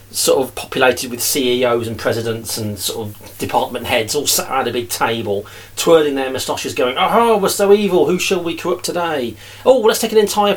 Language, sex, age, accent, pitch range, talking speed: English, male, 40-59, British, 110-170 Hz, 210 wpm